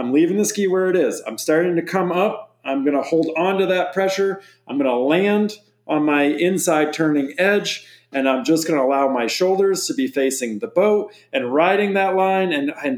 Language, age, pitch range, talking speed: English, 40-59, 135-185 Hz, 215 wpm